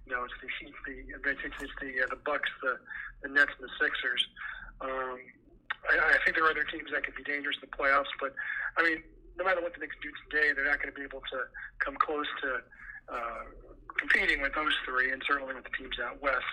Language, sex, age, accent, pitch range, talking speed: English, male, 40-59, American, 135-180 Hz, 230 wpm